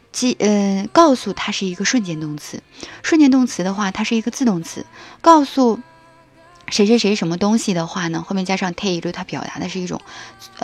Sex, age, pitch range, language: female, 20-39, 165-235 Hz, Chinese